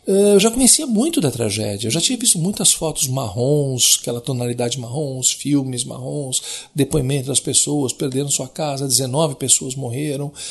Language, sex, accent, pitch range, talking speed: Portuguese, male, Brazilian, 130-210 Hz, 155 wpm